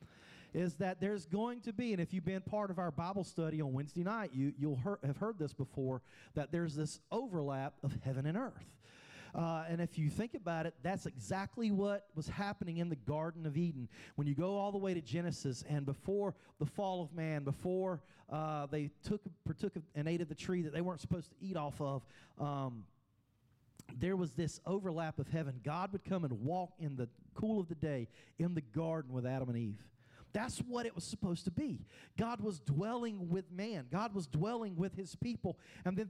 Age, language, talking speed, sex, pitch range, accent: 40-59, English, 210 wpm, male, 155-210 Hz, American